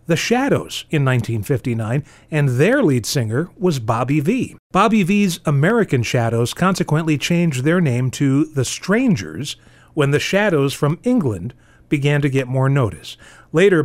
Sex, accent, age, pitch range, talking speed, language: male, American, 40-59, 130-185 Hz, 145 wpm, English